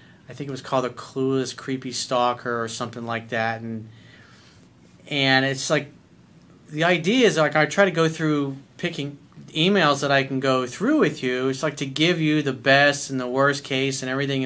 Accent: American